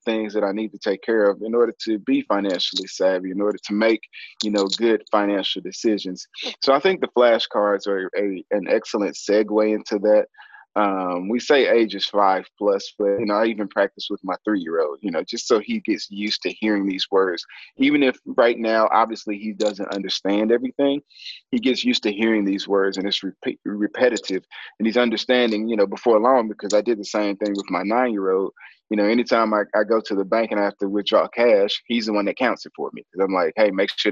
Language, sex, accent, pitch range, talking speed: English, male, American, 100-115 Hz, 225 wpm